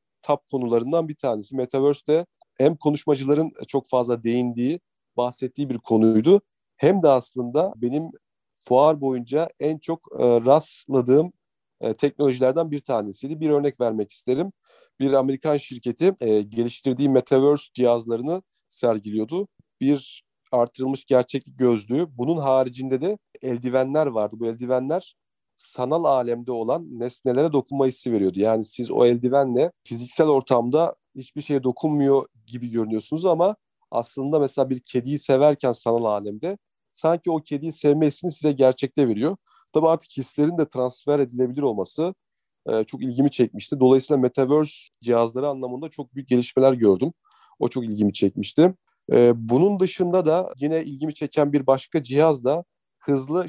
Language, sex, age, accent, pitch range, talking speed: Turkish, male, 40-59, native, 125-150 Hz, 130 wpm